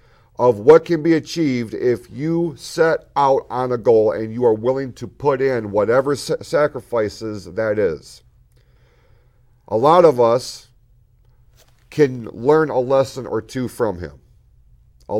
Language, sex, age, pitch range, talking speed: English, male, 40-59, 110-135 Hz, 140 wpm